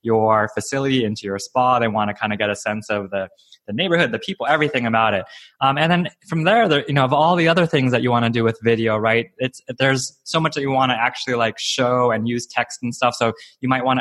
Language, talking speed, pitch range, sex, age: English, 270 wpm, 115-140 Hz, male, 20-39